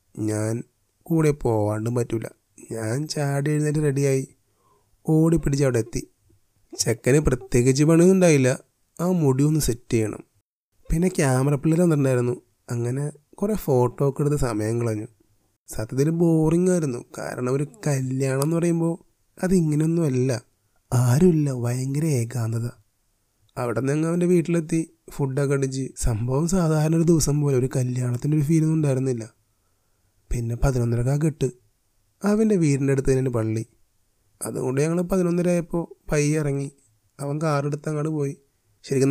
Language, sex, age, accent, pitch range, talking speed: Malayalam, male, 30-49, native, 115-155 Hz, 120 wpm